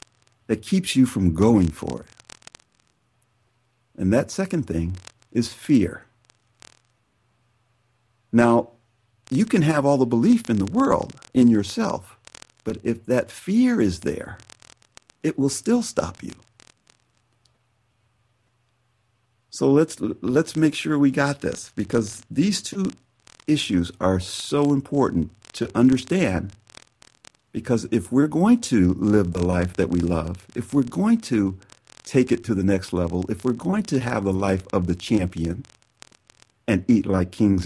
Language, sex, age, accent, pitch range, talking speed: English, male, 60-79, American, 95-120 Hz, 140 wpm